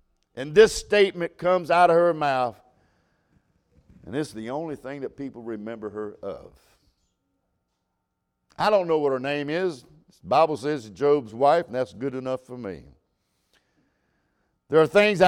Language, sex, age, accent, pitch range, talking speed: English, male, 60-79, American, 135-195 Hz, 155 wpm